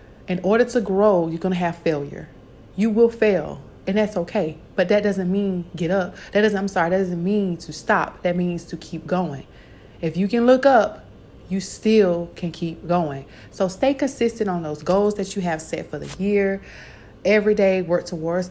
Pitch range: 160-195 Hz